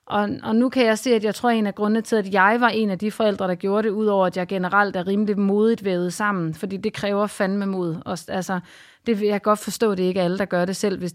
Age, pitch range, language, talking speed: 30-49, 190-220 Hz, Danish, 290 wpm